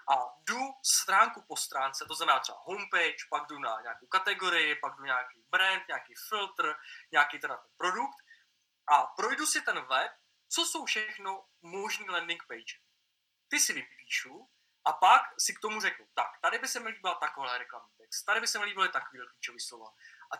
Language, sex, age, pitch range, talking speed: Czech, male, 20-39, 200-255 Hz, 180 wpm